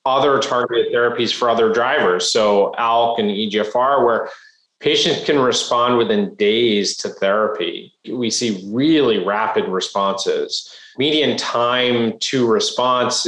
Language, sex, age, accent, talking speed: English, male, 30-49, American, 120 wpm